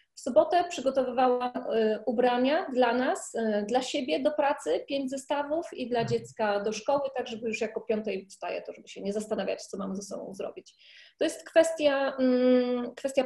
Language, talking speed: Polish, 170 wpm